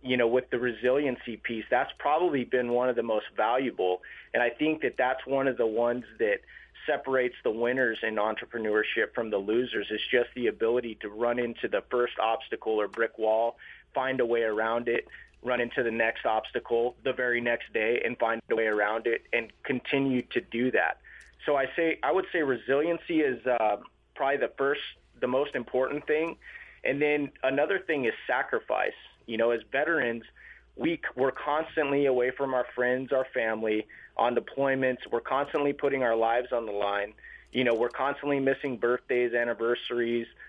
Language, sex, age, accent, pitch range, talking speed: English, male, 30-49, American, 115-140 Hz, 180 wpm